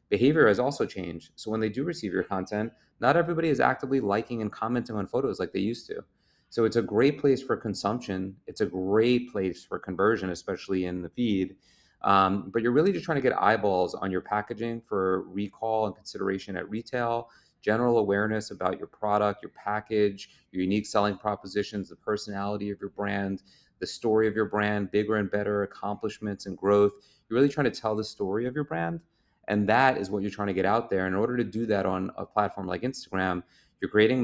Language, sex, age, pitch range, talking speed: English, male, 30-49, 95-110 Hz, 205 wpm